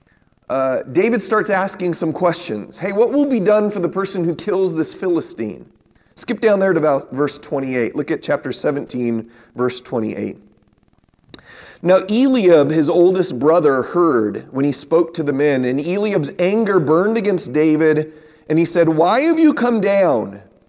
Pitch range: 145-200 Hz